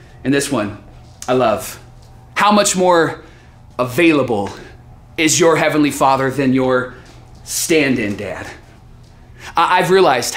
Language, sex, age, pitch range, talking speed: English, male, 30-49, 135-200 Hz, 110 wpm